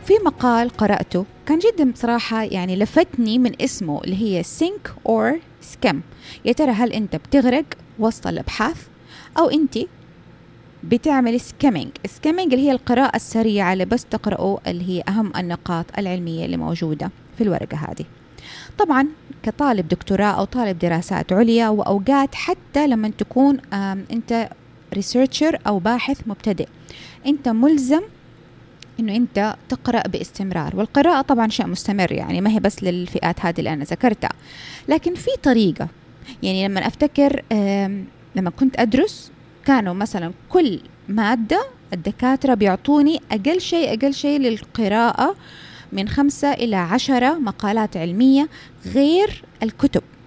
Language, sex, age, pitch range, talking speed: Arabic, female, 20-39, 195-275 Hz, 130 wpm